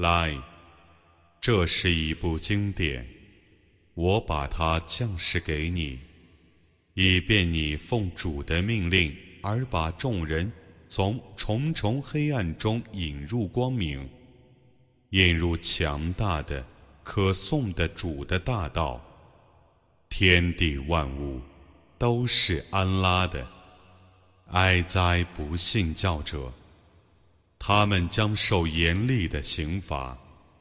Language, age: Arabic, 30-49